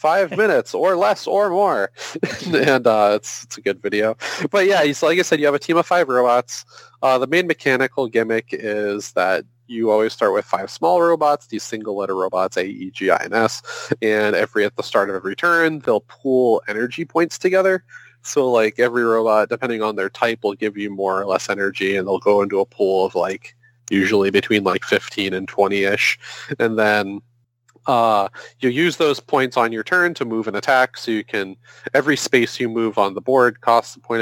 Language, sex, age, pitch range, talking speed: English, male, 30-49, 100-130 Hz, 210 wpm